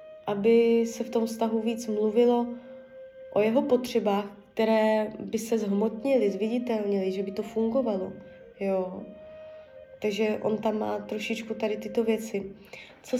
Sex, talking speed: female, 130 wpm